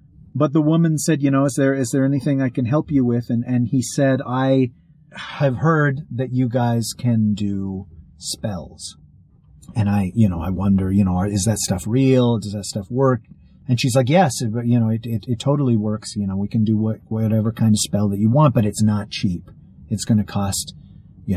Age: 40-59